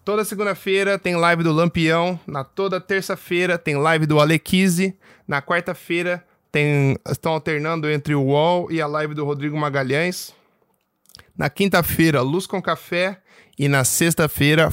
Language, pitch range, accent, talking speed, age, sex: Portuguese, 140-175 Hz, Brazilian, 145 wpm, 10-29, male